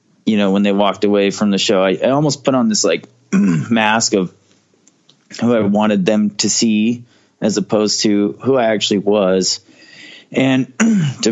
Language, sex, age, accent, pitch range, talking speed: English, male, 20-39, American, 100-115 Hz, 175 wpm